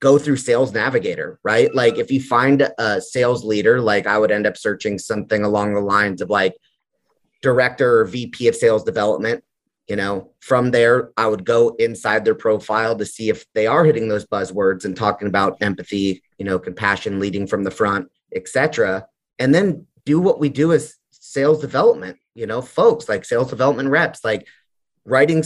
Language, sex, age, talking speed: English, male, 30-49, 185 wpm